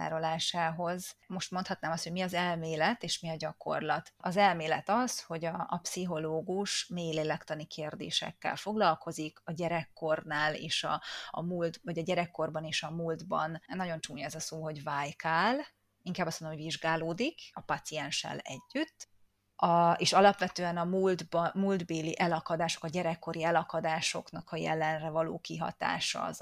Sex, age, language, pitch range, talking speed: female, 30-49, Hungarian, 160-190 Hz, 140 wpm